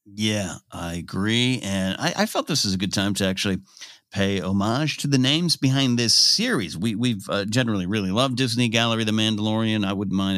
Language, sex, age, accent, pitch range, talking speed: English, male, 50-69, American, 95-140 Hz, 200 wpm